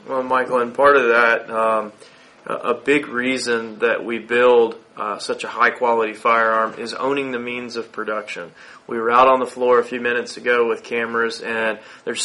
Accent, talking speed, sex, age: American, 185 wpm, male, 30-49